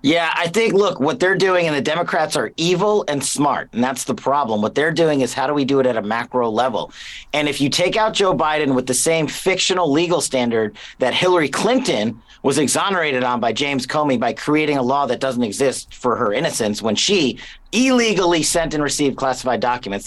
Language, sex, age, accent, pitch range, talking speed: English, male, 40-59, American, 125-155 Hz, 210 wpm